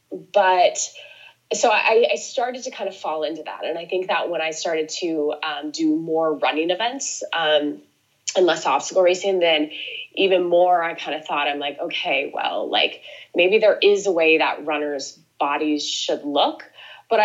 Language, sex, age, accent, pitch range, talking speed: English, female, 20-39, American, 155-230 Hz, 180 wpm